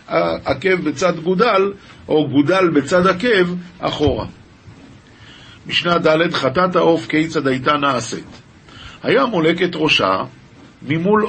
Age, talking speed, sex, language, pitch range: 50-69, 100 wpm, male, Hebrew, 135-185 Hz